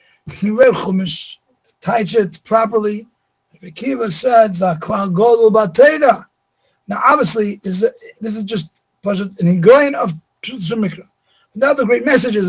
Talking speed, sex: 95 wpm, male